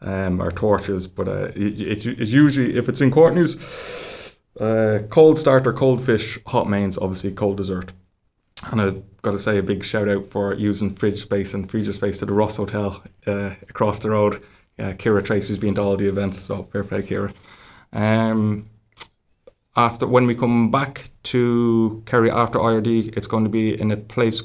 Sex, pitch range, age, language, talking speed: male, 105-125 Hz, 20-39, English, 185 wpm